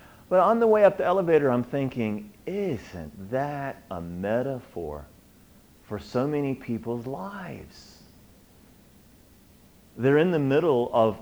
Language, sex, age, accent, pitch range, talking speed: English, male, 40-59, American, 120-180 Hz, 125 wpm